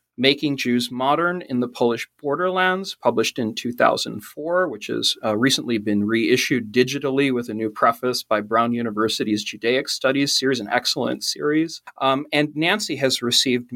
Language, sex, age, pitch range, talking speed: English, male, 40-59, 115-150 Hz, 155 wpm